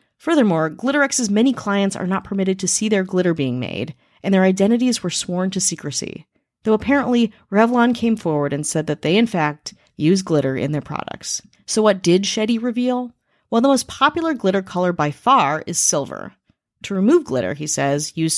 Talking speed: 185 wpm